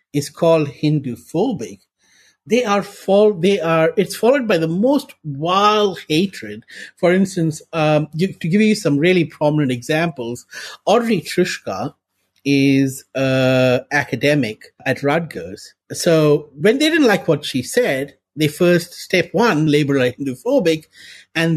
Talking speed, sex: 135 wpm, male